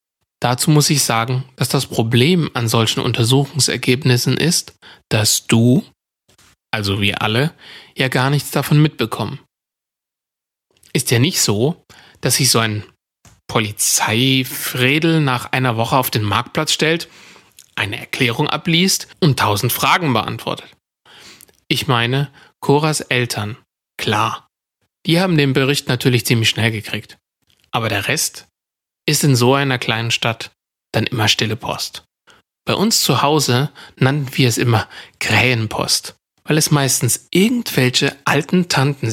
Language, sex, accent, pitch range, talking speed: German, male, German, 115-145 Hz, 130 wpm